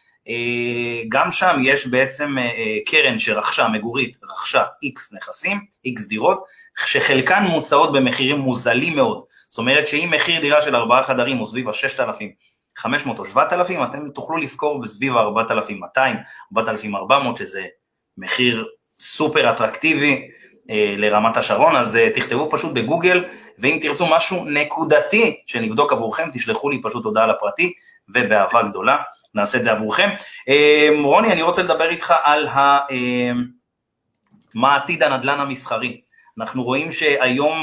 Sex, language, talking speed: male, Hebrew, 120 wpm